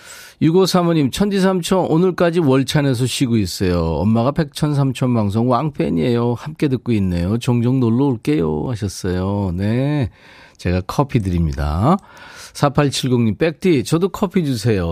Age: 40-59